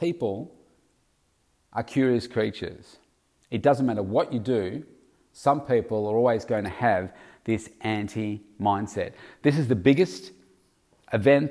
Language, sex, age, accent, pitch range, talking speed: English, male, 40-59, Australian, 100-130 Hz, 125 wpm